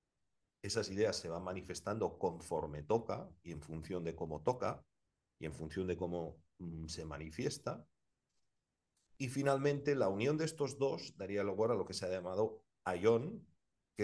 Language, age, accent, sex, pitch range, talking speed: Spanish, 40-59, Spanish, male, 85-110 Hz, 160 wpm